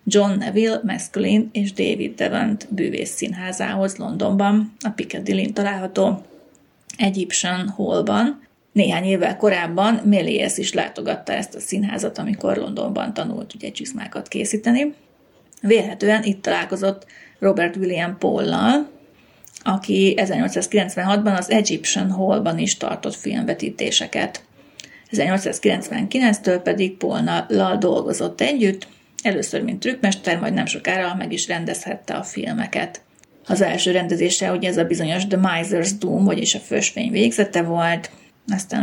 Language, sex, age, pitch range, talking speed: Hungarian, female, 30-49, 185-220 Hz, 115 wpm